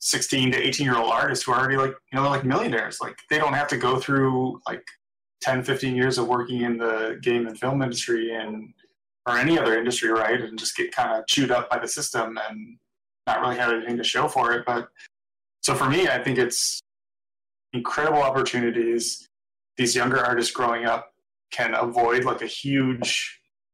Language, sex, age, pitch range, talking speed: English, male, 20-39, 115-140 Hz, 195 wpm